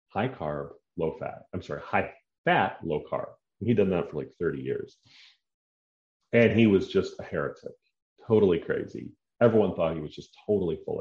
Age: 40-59